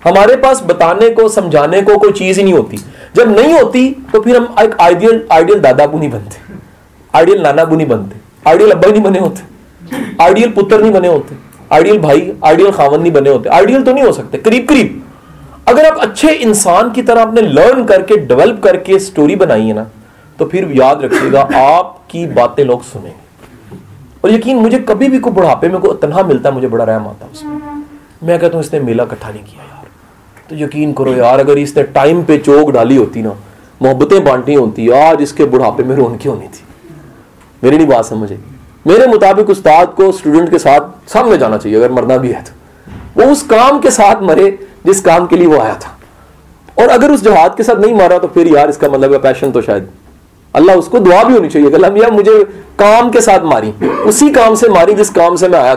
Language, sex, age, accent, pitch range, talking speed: English, male, 40-59, Indian, 135-225 Hz, 155 wpm